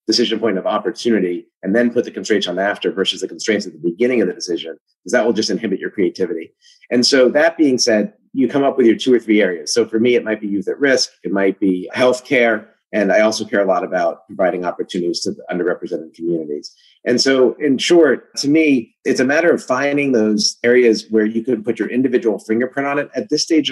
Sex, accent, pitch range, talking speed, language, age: male, American, 110-140 Hz, 230 wpm, English, 30-49